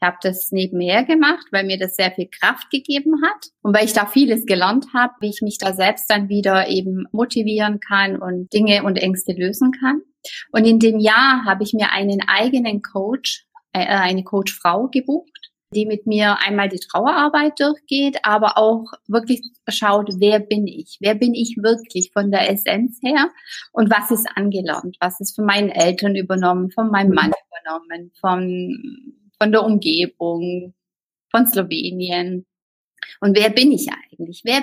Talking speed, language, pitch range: 170 wpm, German, 195-260 Hz